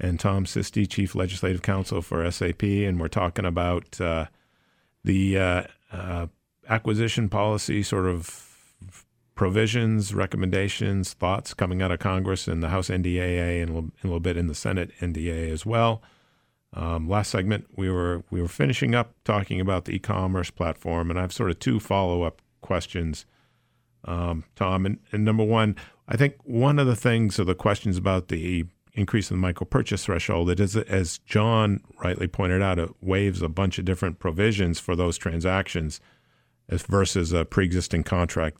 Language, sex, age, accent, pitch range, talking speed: English, male, 50-69, American, 85-105 Hz, 175 wpm